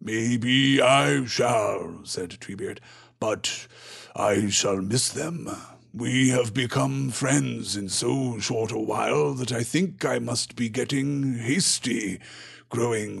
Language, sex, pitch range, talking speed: English, male, 110-130 Hz, 125 wpm